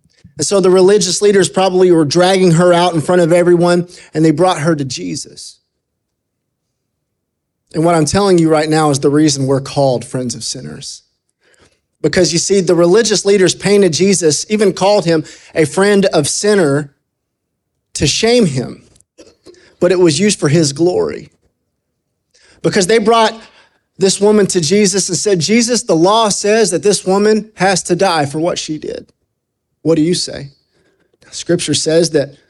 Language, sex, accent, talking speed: English, male, American, 165 wpm